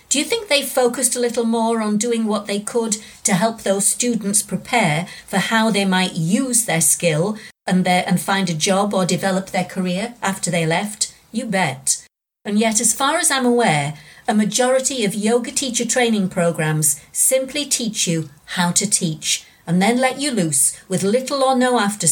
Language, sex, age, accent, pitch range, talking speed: English, female, 50-69, British, 175-235 Hz, 185 wpm